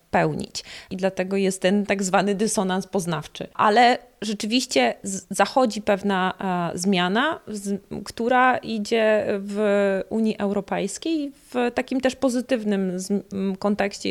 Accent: native